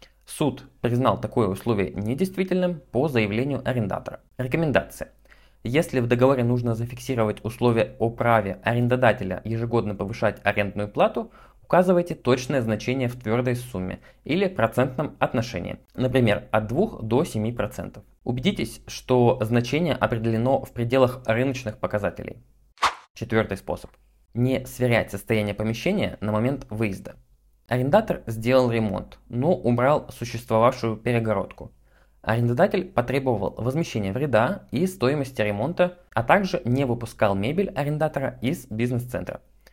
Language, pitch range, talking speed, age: Russian, 110-135 Hz, 115 wpm, 20-39